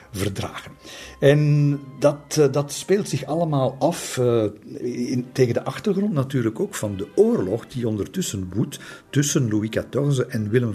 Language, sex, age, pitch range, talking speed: Dutch, male, 50-69, 100-130 Hz, 140 wpm